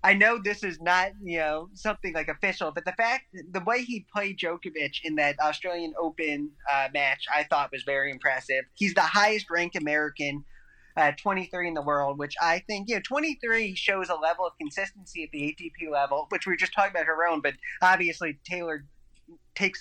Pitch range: 150-190 Hz